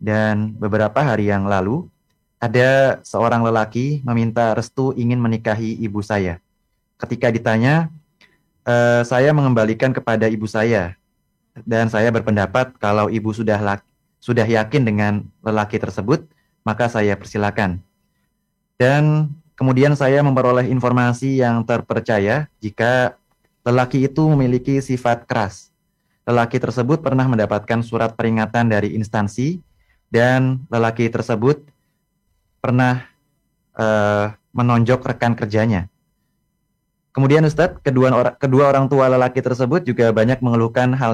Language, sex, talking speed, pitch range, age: Indonesian, male, 110 wpm, 105-125 Hz, 20-39